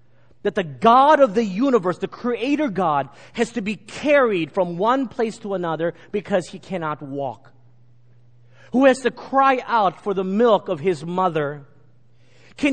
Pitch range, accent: 120-180 Hz, American